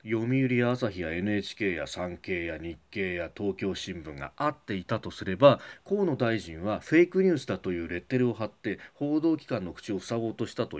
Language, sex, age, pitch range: Japanese, male, 40-59, 105-165 Hz